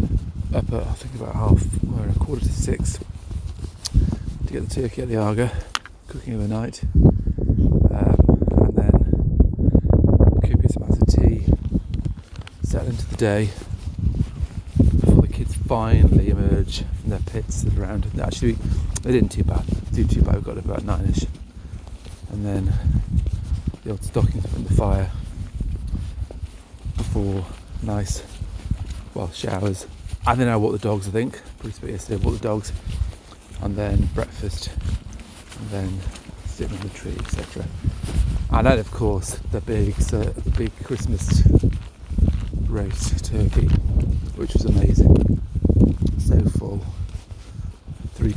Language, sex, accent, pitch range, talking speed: English, male, British, 85-105 Hz, 140 wpm